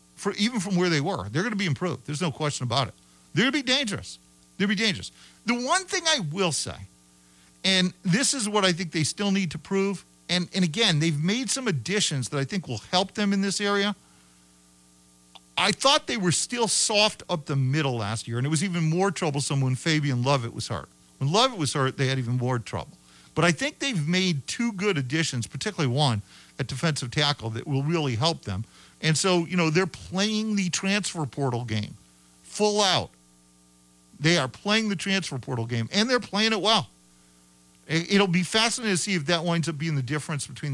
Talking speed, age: 210 wpm, 40-59